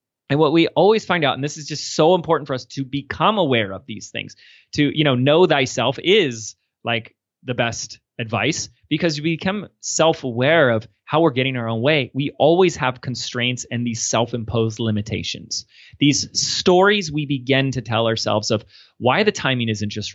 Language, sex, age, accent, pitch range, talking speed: English, male, 30-49, American, 105-140 Hz, 185 wpm